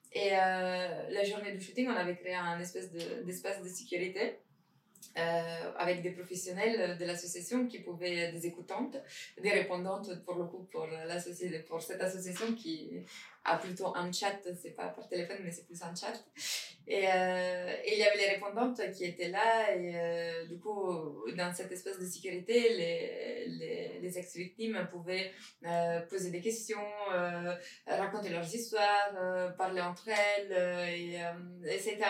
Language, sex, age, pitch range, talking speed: French, female, 20-39, 175-205 Hz, 170 wpm